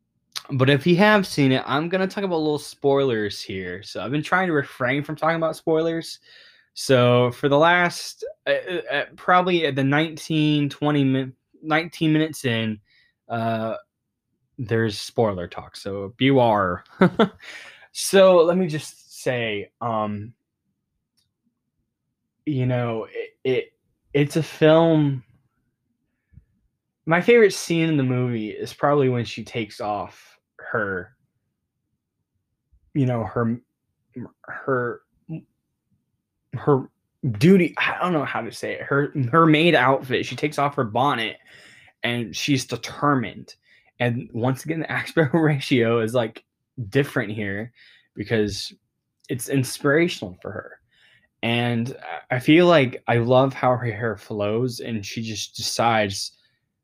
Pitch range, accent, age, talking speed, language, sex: 115-155 Hz, American, 10-29, 135 wpm, English, male